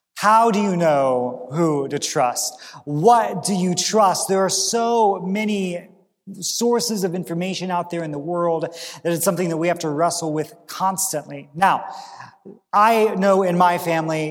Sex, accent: male, American